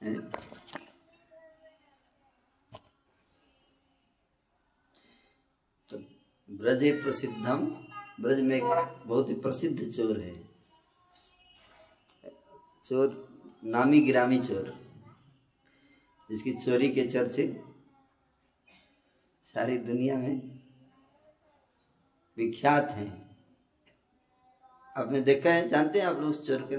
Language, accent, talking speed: Hindi, native, 70 wpm